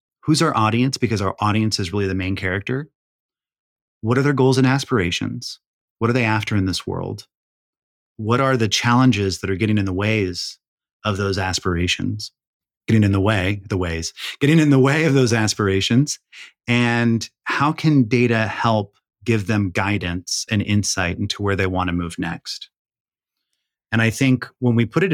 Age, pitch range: 30-49, 95-120 Hz